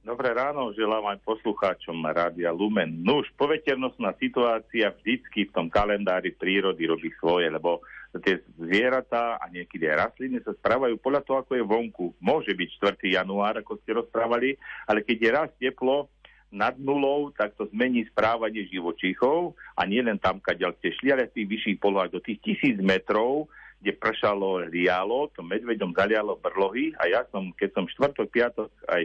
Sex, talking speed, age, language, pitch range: male, 165 wpm, 50-69, Slovak, 95-120 Hz